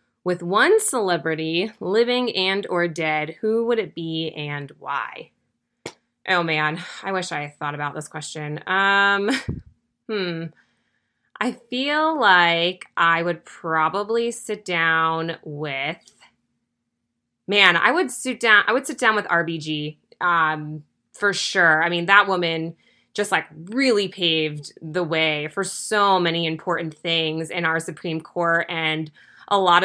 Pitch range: 155-190 Hz